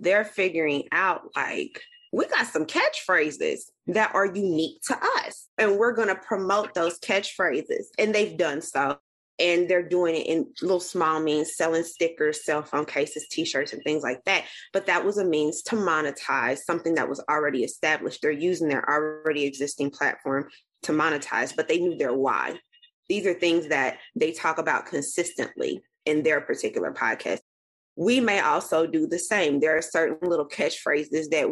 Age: 20-39